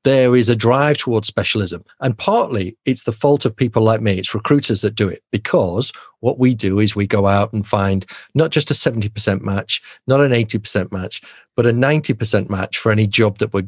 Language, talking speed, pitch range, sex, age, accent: English, 210 wpm, 105-130 Hz, male, 40-59, British